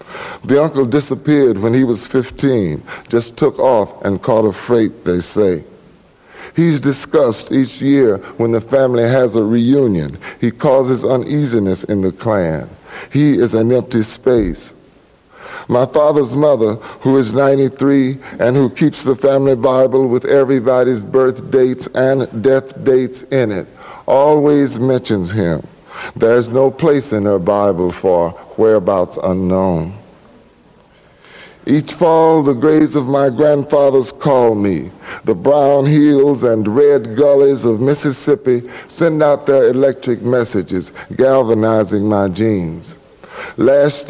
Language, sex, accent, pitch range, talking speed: English, male, American, 110-140 Hz, 130 wpm